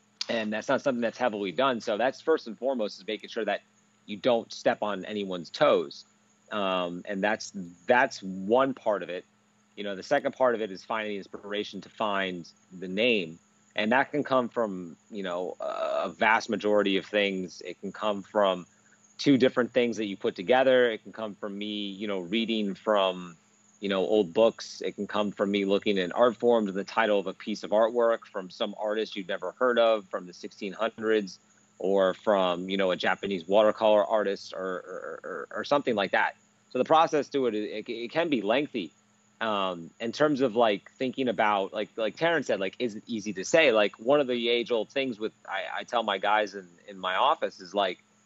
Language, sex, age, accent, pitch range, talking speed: English, male, 30-49, American, 100-120 Hz, 210 wpm